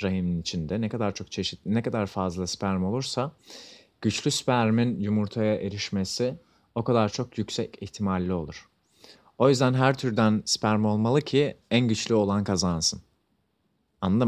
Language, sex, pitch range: Turkish, male, 95-125 Hz